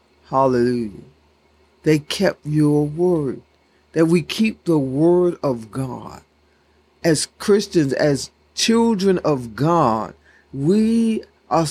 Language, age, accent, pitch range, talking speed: English, 50-69, American, 125-200 Hz, 100 wpm